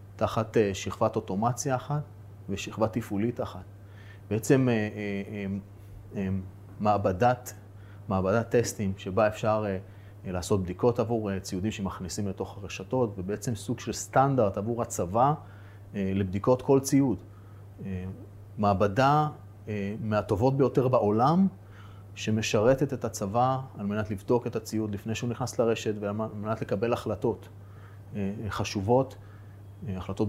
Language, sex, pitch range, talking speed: Hebrew, male, 100-115 Hz, 100 wpm